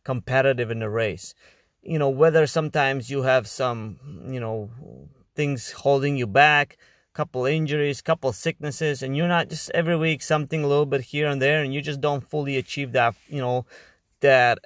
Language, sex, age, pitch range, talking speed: English, male, 30-49, 115-145 Hz, 185 wpm